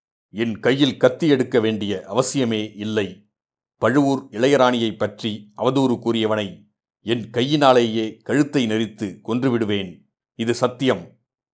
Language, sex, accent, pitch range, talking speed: Tamil, male, native, 110-130 Hz, 95 wpm